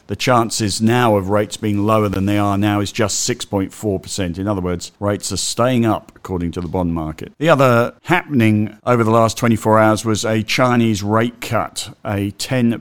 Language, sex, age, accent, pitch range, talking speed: English, male, 50-69, British, 95-115 Hz, 190 wpm